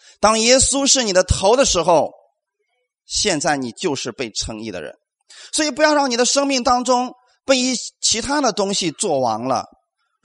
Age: 30-49